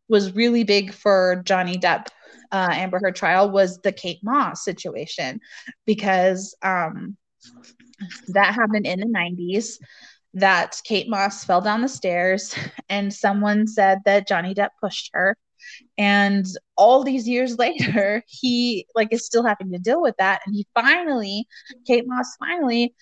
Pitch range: 185-235 Hz